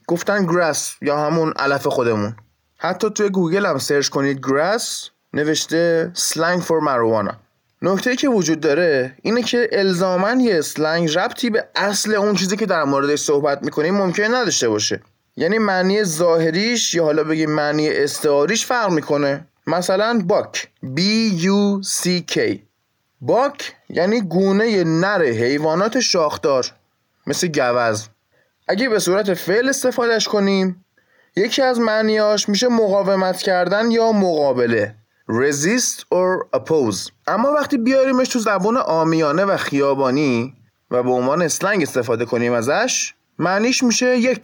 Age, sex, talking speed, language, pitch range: 20-39, male, 130 wpm, Persian, 150-215 Hz